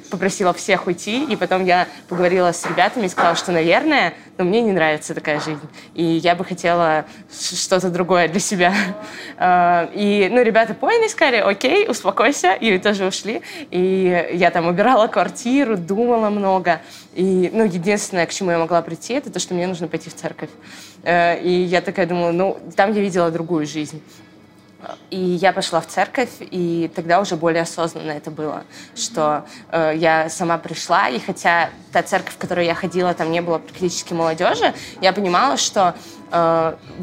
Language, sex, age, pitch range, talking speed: Russian, female, 20-39, 165-195 Hz, 170 wpm